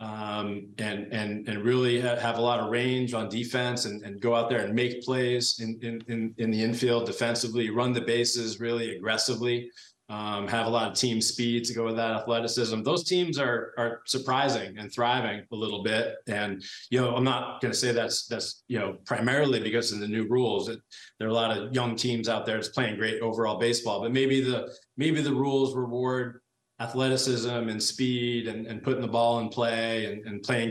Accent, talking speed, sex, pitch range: American, 210 wpm, male, 110-125 Hz